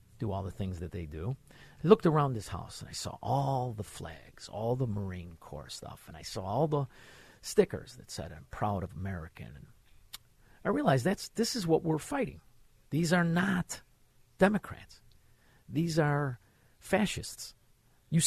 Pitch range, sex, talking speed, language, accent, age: 115-180 Hz, male, 170 wpm, English, American, 50-69